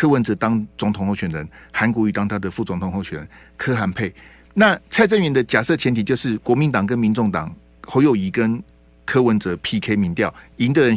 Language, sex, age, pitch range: Chinese, male, 50-69, 90-140 Hz